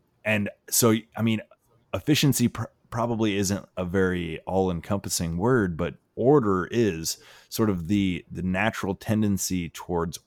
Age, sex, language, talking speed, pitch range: 20-39, male, English, 135 wpm, 85-110 Hz